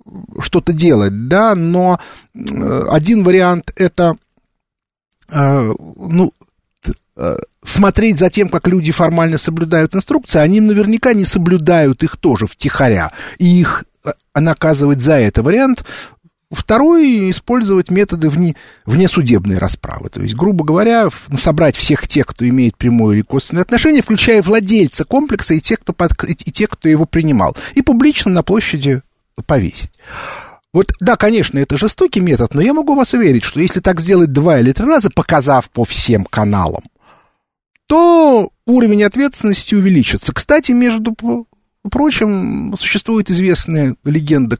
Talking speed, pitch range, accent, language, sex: 140 wpm, 140-215 Hz, native, Russian, male